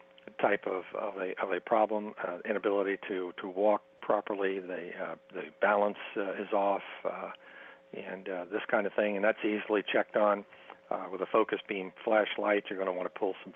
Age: 60-79